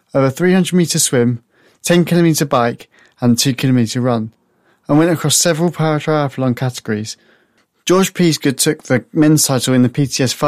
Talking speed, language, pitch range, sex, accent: 155 wpm, English, 125-155 Hz, male, British